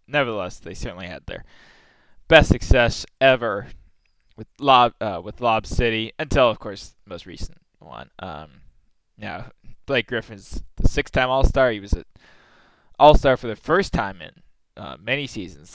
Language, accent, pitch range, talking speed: English, American, 100-125 Hz, 150 wpm